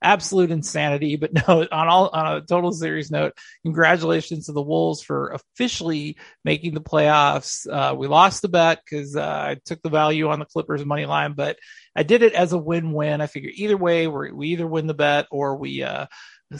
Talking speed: 195 wpm